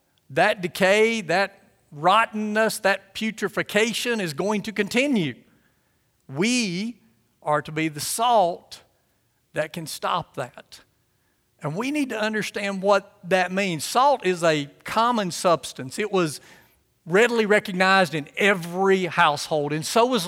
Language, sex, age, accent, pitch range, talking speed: English, male, 50-69, American, 150-200 Hz, 125 wpm